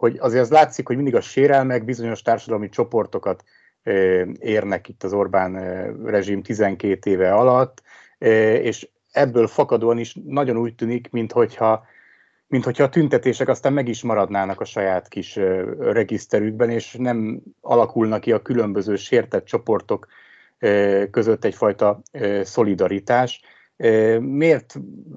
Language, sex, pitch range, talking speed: Hungarian, male, 95-120 Hz, 115 wpm